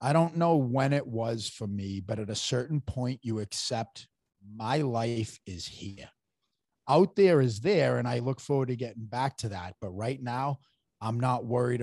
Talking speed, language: 195 wpm, English